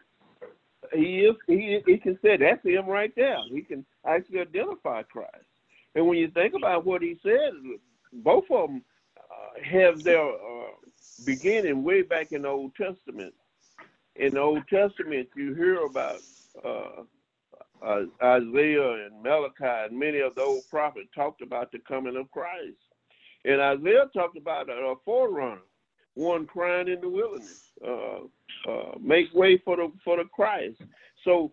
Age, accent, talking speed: 50-69, American, 155 wpm